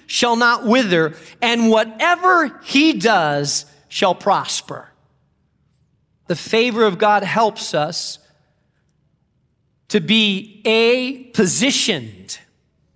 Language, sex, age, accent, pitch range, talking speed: English, male, 40-59, American, 185-230 Hz, 90 wpm